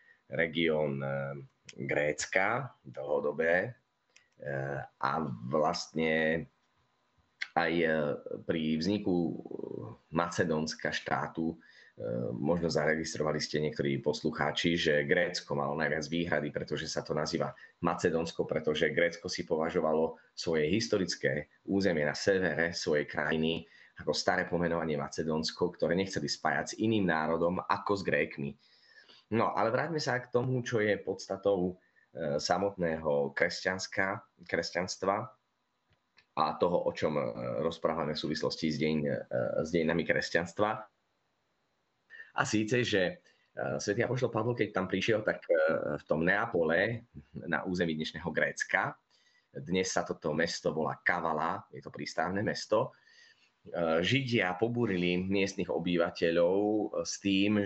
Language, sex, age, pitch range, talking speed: Slovak, male, 30-49, 80-95 Hz, 110 wpm